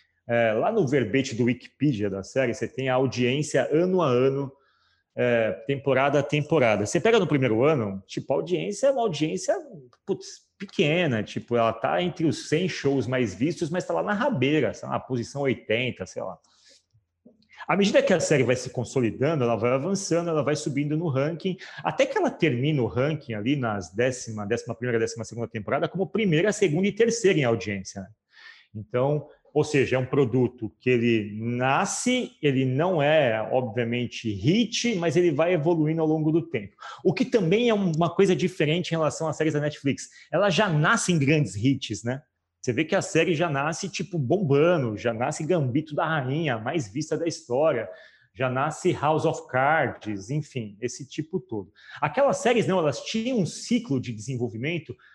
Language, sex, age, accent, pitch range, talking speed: Portuguese, male, 30-49, Brazilian, 125-175 Hz, 180 wpm